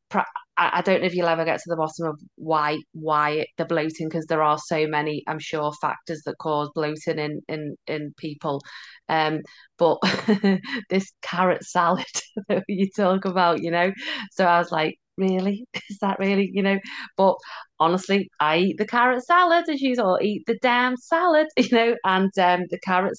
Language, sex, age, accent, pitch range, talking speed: English, female, 30-49, British, 165-200 Hz, 185 wpm